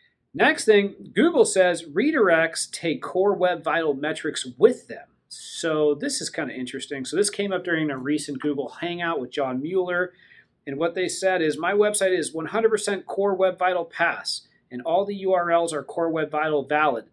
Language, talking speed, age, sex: English, 180 wpm, 40-59, male